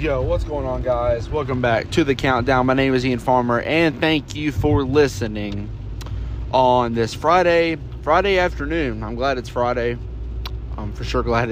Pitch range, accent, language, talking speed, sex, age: 110-140 Hz, American, English, 170 wpm, male, 30-49